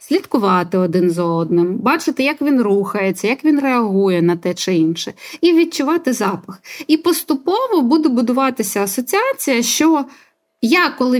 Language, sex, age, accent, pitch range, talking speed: Ukrainian, female, 20-39, native, 180-260 Hz, 140 wpm